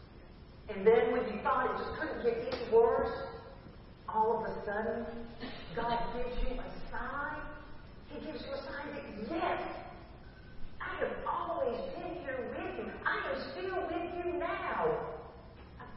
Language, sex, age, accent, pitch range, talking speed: English, female, 40-59, American, 190-285 Hz, 155 wpm